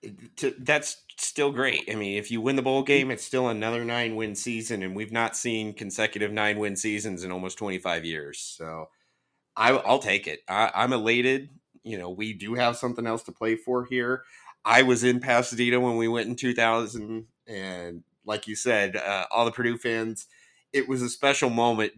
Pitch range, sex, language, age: 100-120 Hz, male, English, 30-49